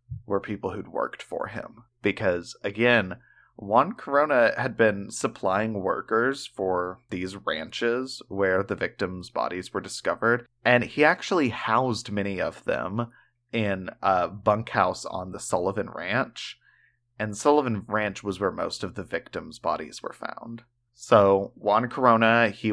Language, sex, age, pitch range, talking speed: English, male, 30-49, 100-120 Hz, 140 wpm